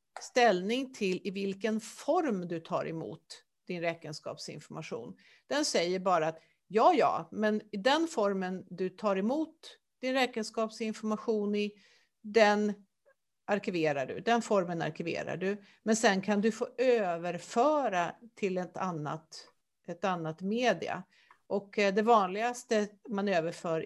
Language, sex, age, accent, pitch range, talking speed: Swedish, female, 50-69, native, 175-225 Hz, 125 wpm